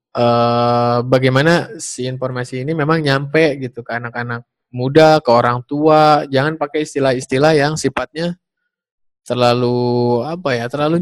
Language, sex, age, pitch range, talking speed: Indonesian, male, 20-39, 120-155 Hz, 130 wpm